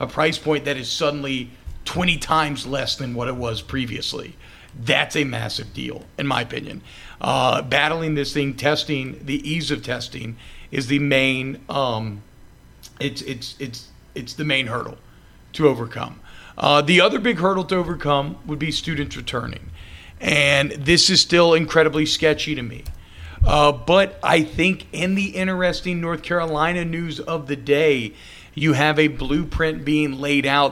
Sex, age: male, 40-59